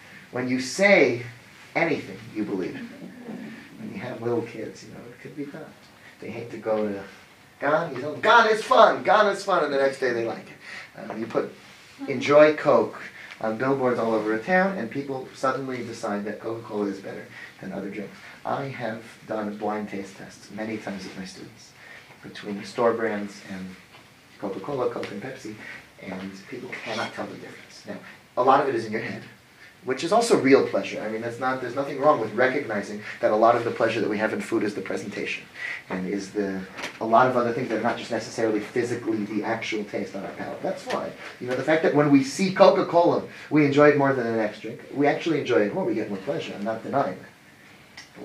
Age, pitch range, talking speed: 30-49, 110-140 Hz, 220 wpm